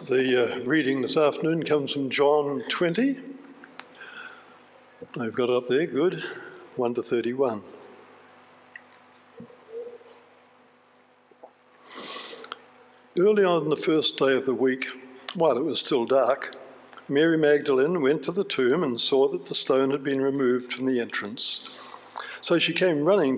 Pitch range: 135-230 Hz